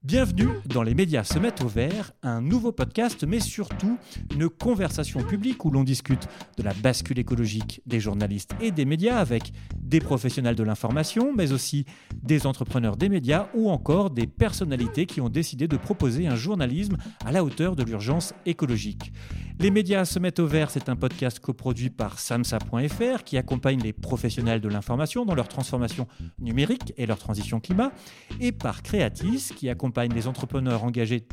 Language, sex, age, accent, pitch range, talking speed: French, male, 40-59, French, 120-185 Hz, 170 wpm